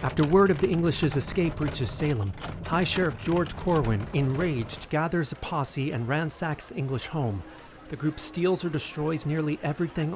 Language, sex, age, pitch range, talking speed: English, male, 40-59, 115-155 Hz, 165 wpm